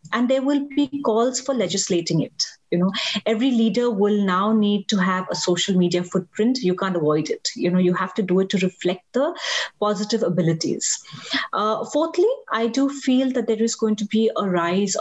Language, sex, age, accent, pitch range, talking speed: English, female, 30-49, Indian, 185-230 Hz, 200 wpm